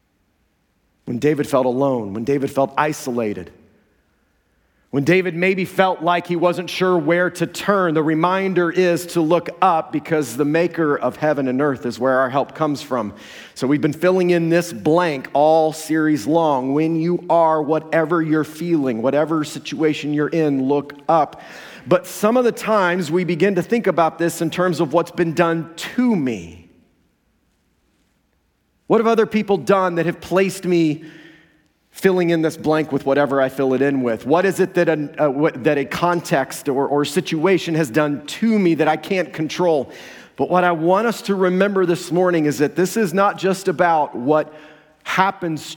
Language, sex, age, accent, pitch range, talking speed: English, male, 40-59, American, 140-175 Hz, 175 wpm